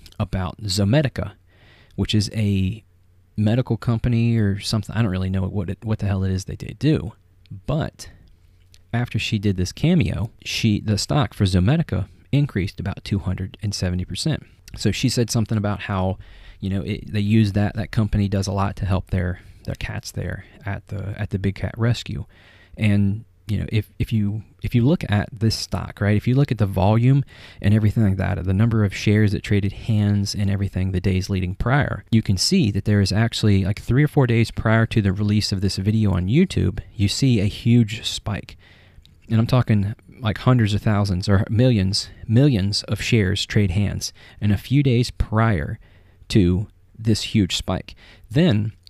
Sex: male